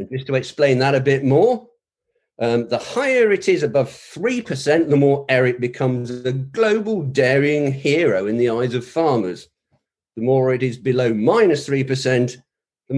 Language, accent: English, British